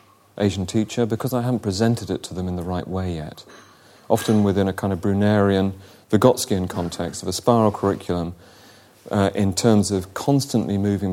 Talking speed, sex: 175 wpm, male